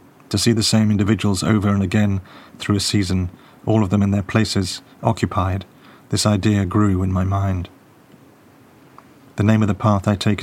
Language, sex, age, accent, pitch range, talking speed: English, male, 40-59, British, 100-110 Hz, 180 wpm